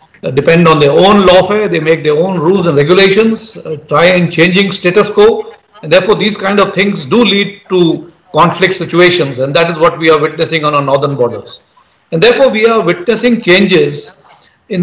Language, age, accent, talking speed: English, 50-69, Indian, 195 wpm